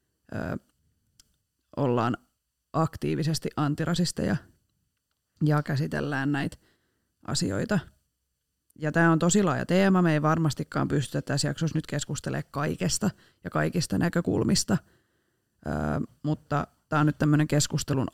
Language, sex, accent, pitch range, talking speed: Finnish, female, native, 145-180 Hz, 105 wpm